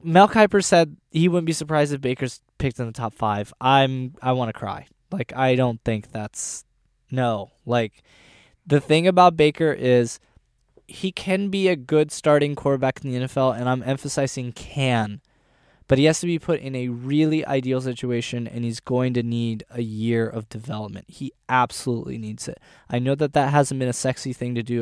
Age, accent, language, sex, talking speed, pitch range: 10-29, American, English, male, 190 wpm, 120-155 Hz